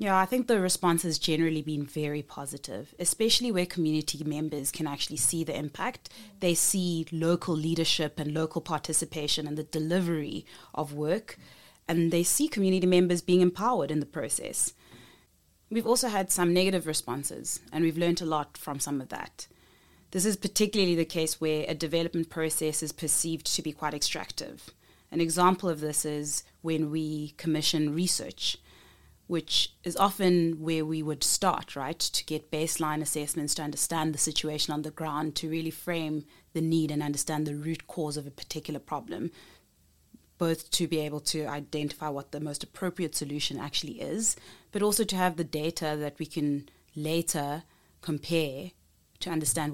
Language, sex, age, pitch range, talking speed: English, female, 30-49, 150-175 Hz, 170 wpm